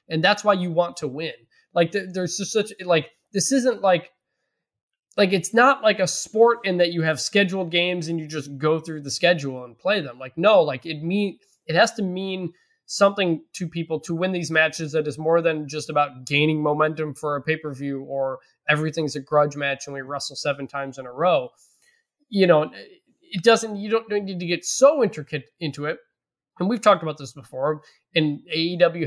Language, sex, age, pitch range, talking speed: English, male, 20-39, 150-195 Hz, 200 wpm